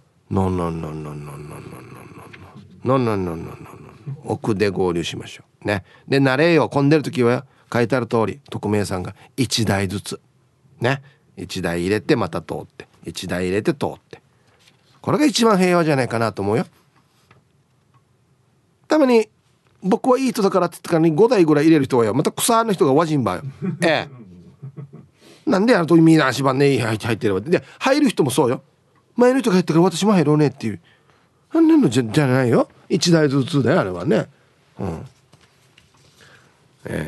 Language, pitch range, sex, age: Japanese, 115-155 Hz, male, 40-59